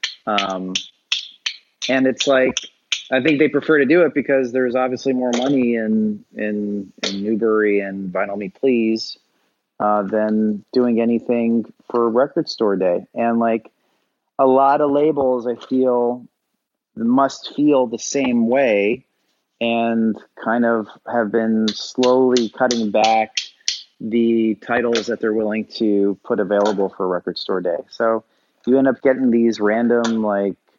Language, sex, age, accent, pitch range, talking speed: English, male, 30-49, American, 105-125 Hz, 140 wpm